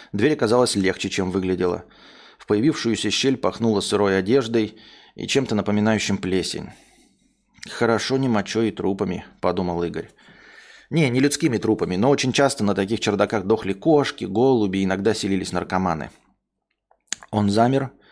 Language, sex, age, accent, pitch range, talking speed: Russian, male, 20-39, native, 100-120 Hz, 135 wpm